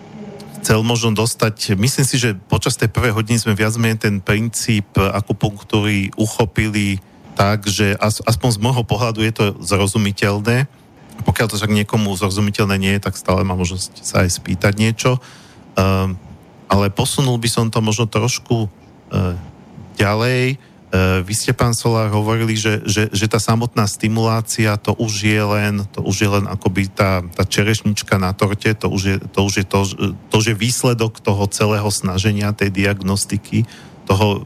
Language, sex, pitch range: Slovak, male, 100-115 Hz